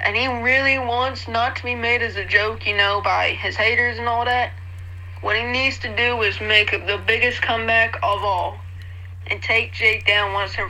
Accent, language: American, English